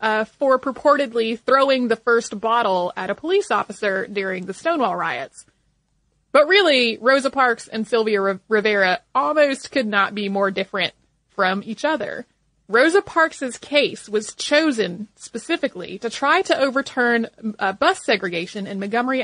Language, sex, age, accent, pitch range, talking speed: English, female, 30-49, American, 215-290 Hz, 145 wpm